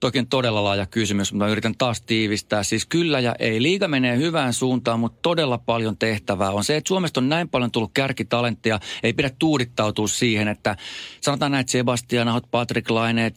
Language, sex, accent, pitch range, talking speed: Finnish, male, native, 105-125 Hz, 180 wpm